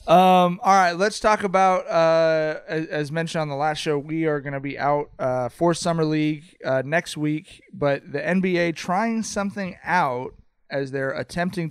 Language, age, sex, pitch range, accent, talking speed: English, 30-49, male, 140-175 Hz, American, 185 wpm